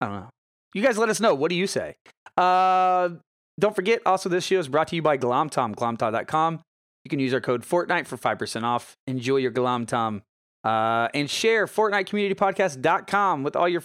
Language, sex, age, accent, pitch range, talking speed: English, male, 30-49, American, 120-165 Hz, 200 wpm